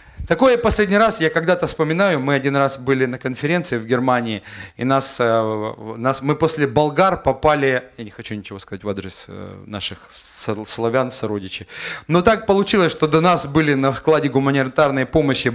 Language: English